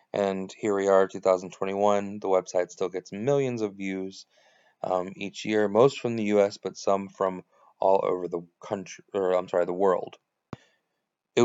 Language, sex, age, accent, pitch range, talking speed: English, male, 20-39, American, 95-105 Hz, 170 wpm